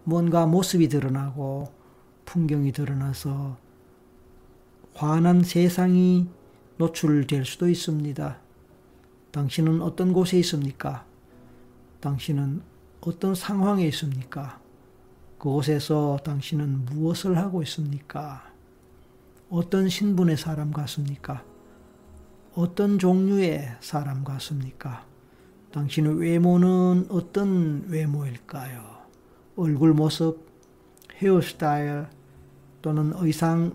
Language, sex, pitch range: Korean, male, 135-170 Hz